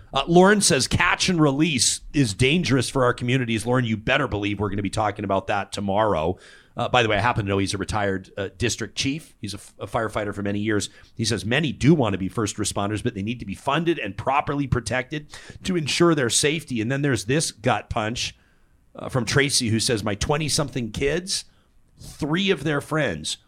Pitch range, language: 110-140 Hz, English